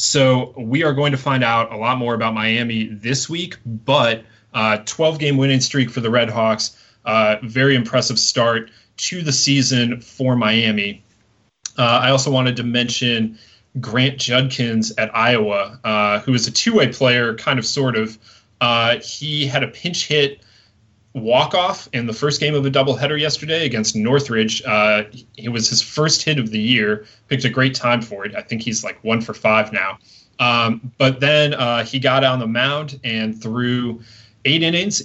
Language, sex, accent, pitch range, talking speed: English, male, American, 110-135 Hz, 180 wpm